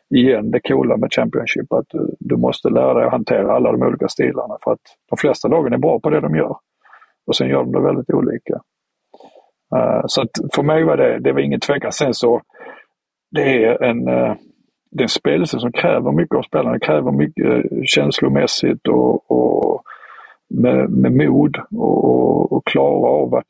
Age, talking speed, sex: 50-69, 185 wpm, male